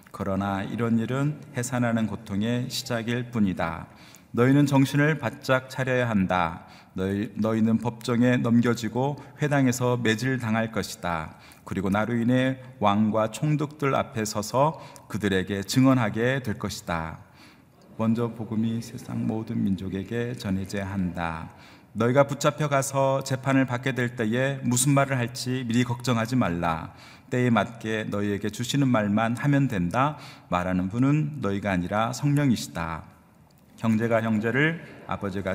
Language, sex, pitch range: Korean, male, 100-130 Hz